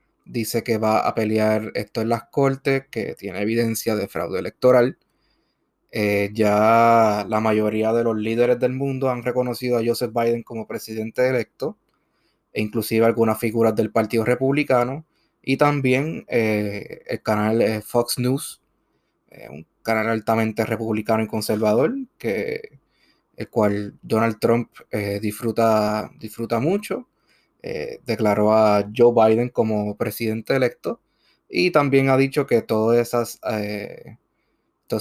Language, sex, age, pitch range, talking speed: Spanish, male, 20-39, 110-125 Hz, 135 wpm